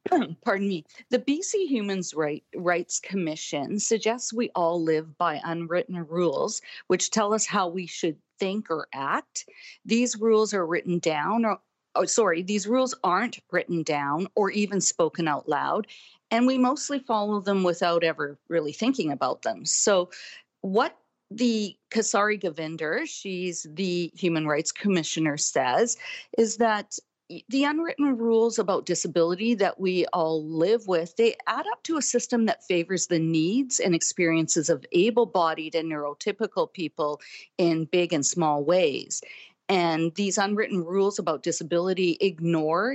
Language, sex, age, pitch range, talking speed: English, female, 50-69, 165-225 Hz, 145 wpm